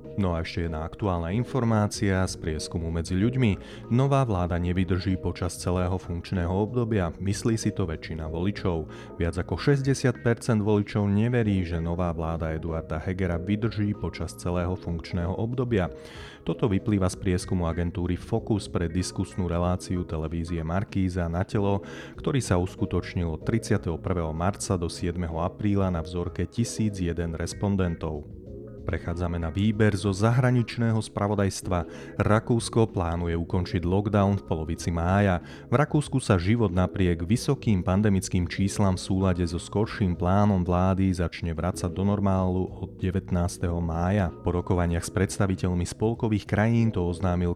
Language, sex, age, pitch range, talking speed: Slovak, male, 30-49, 90-105 Hz, 130 wpm